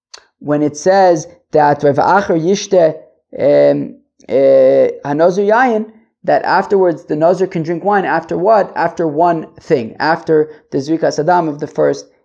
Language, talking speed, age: English, 125 wpm, 20-39